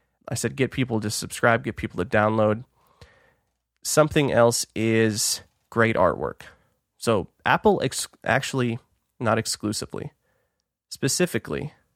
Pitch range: 105-130 Hz